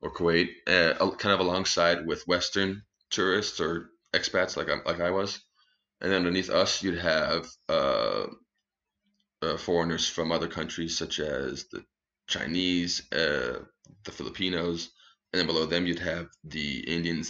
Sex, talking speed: male, 150 wpm